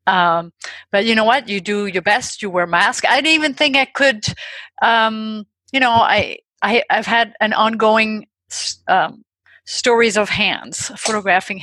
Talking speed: 180 wpm